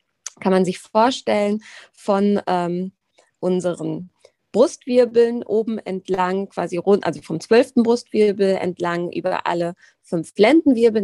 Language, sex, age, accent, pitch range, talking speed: German, female, 20-39, German, 180-235 Hz, 115 wpm